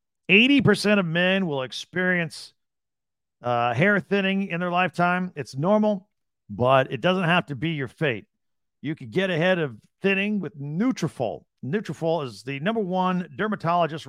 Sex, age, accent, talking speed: male, 50-69, American, 150 wpm